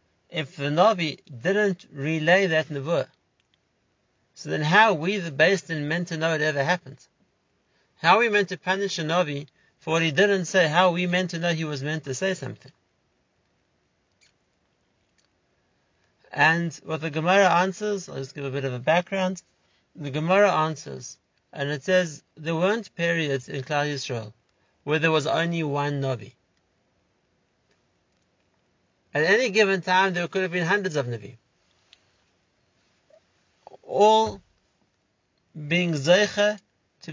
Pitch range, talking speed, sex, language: 145-190 Hz, 150 wpm, male, English